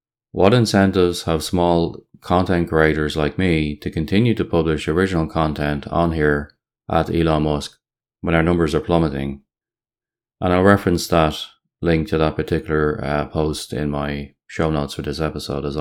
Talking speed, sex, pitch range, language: 160 wpm, male, 75-85 Hz, English